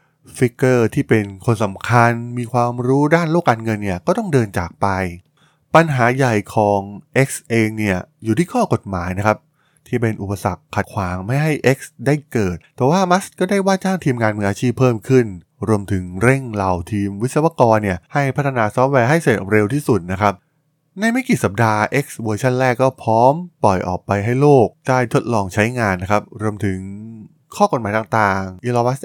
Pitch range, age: 100-135 Hz, 20-39